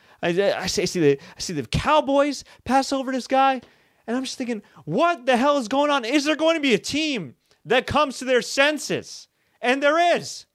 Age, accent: 30-49, American